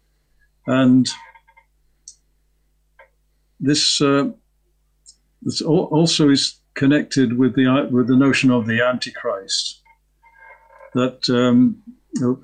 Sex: male